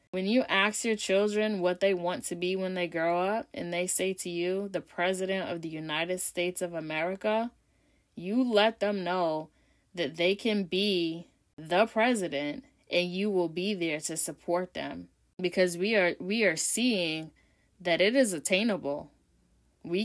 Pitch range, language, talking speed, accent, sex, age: 175-215 Hz, English, 170 wpm, American, female, 10-29